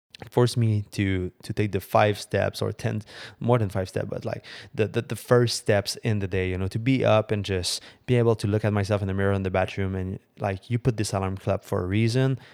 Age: 20-39